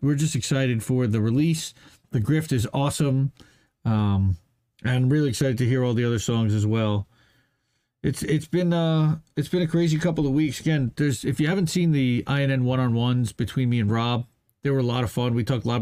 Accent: American